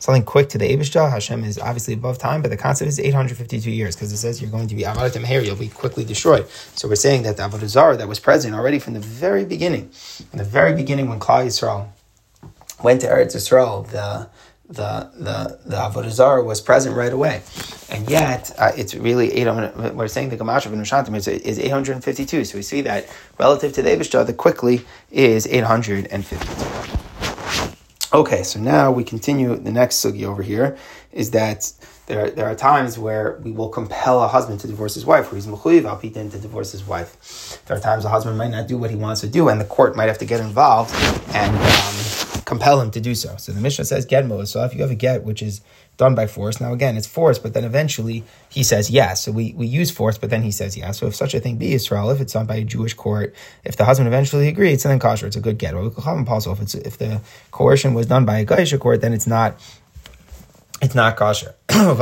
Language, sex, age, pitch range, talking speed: English, male, 30-49, 105-130 Hz, 225 wpm